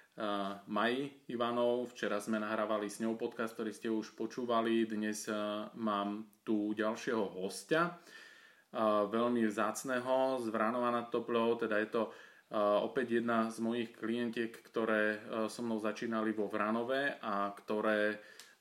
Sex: male